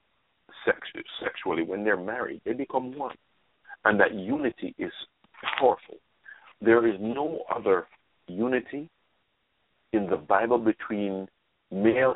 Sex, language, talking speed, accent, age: male, English, 110 wpm, American, 50-69